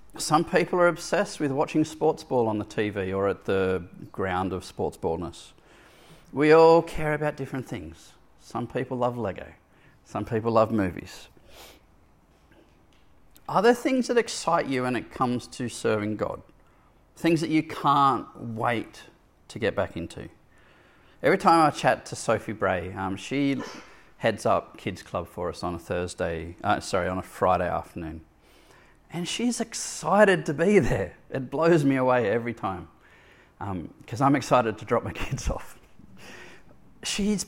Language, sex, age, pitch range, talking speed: English, male, 40-59, 105-160 Hz, 160 wpm